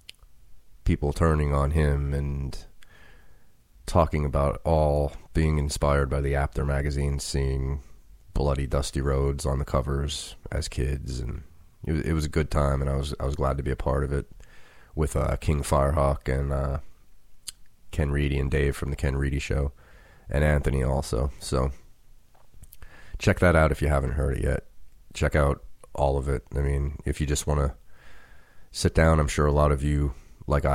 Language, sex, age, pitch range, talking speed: English, male, 30-49, 70-80 Hz, 180 wpm